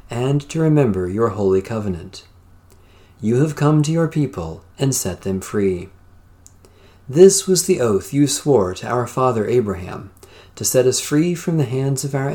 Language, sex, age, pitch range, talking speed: English, male, 40-59, 95-140 Hz, 170 wpm